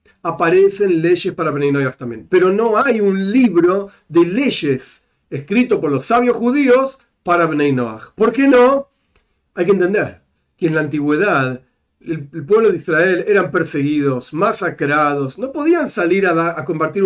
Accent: Argentinian